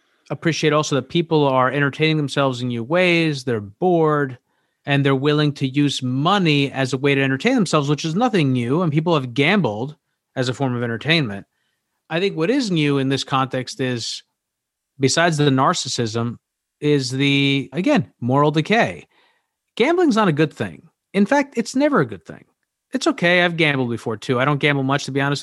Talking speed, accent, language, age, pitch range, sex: 185 wpm, American, English, 30-49, 135-175 Hz, male